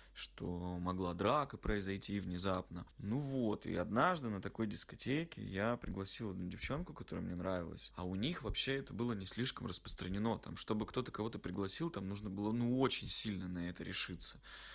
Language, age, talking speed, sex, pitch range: Russian, 20-39, 175 wpm, male, 100-120 Hz